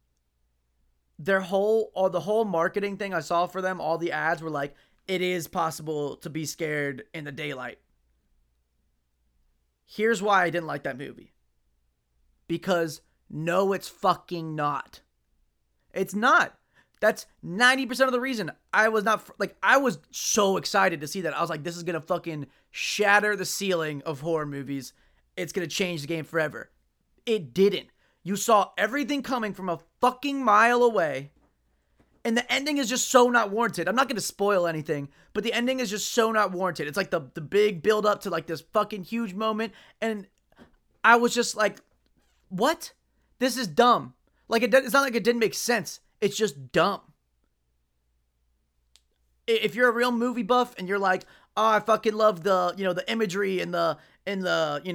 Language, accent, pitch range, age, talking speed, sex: English, American, 150-215 Hz, 20-39, 180 wpm, male